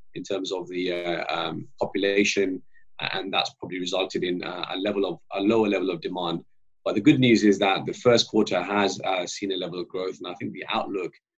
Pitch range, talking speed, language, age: 95-115 Hz, 215 wpm, English, 30-49